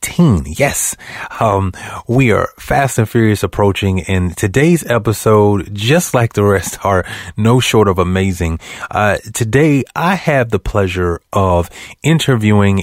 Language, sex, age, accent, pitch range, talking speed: English, male, 30-49, American, 90-115 Hz, 130 wpm